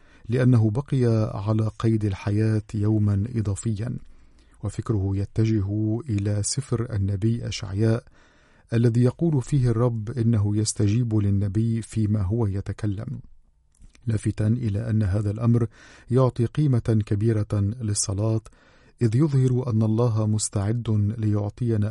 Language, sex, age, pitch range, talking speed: Arabic, male, 50-69, 105-120 Hz, 105 wpm